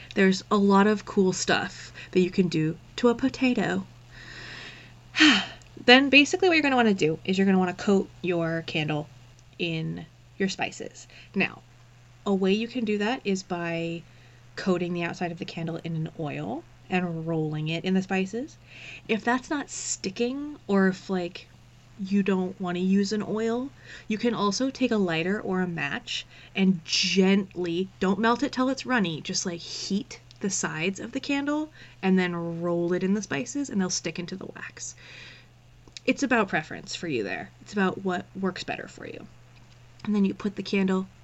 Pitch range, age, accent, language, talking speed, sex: 155-200 Hz, 20-39, American, English, 180 wpm, female